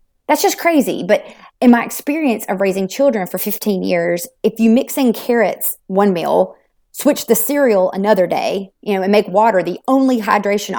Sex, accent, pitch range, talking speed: female, American, 190-235 Hz, 185 wpm